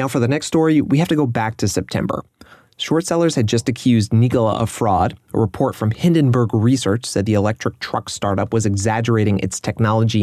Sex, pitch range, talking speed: male, 100-125 Hz, 200 wpm